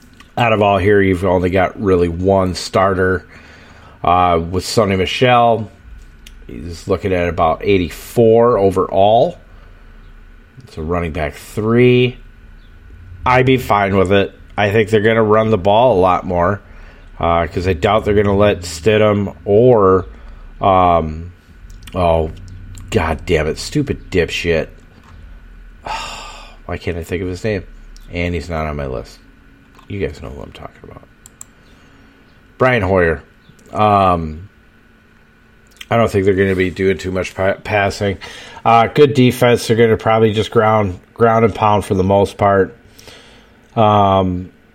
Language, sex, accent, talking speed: English, male, American, 145 wpm